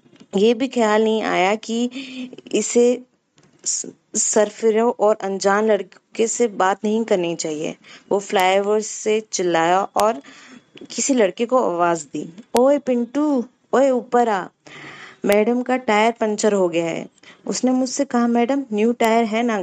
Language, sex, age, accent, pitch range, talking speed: Hindi, female, 20-39, native, 195-245 Hz, 140 wpm